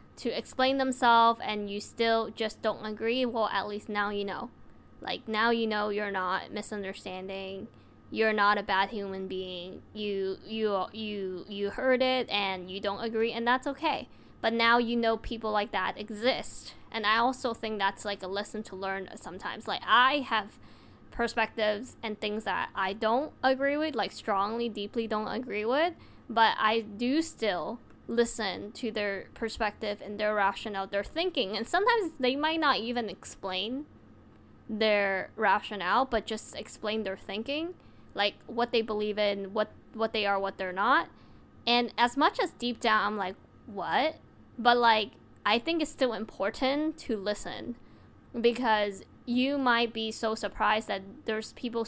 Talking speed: 165 wpm